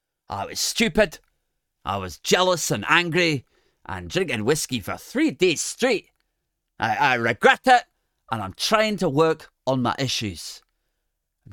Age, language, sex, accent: 30-49, English, male, British